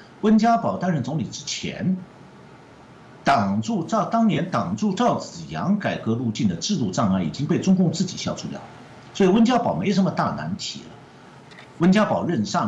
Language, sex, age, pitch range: Chinese, male, 50-69, 115-195 Hz